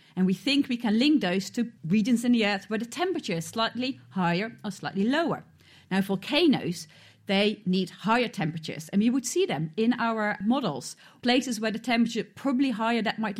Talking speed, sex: 195 wpm, female